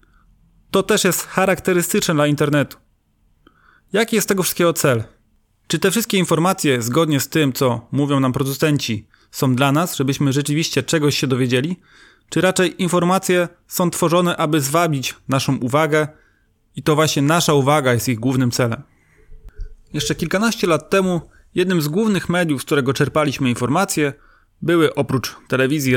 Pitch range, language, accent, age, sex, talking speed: 130-165 Hz, Polish, native, 30-49, male, 145 wpm